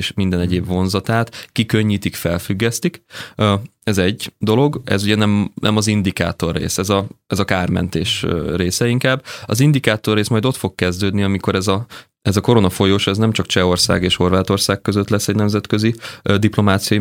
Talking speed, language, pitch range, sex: 165 wpm, Hungarian, 90-110 Hz, male